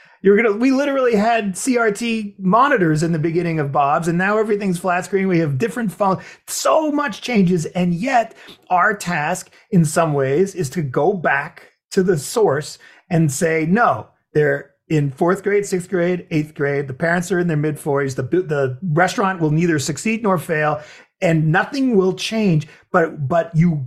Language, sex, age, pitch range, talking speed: English, male, 30-49, 145-190 Hz, 180 wpm